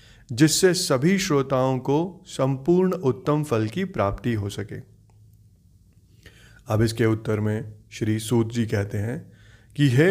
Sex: male